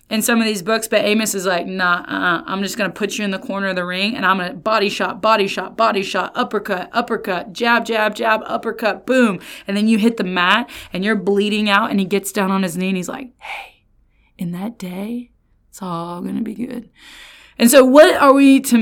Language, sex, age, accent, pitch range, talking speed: English, female, 20-39, American, 190-230 Hz, 240 wpm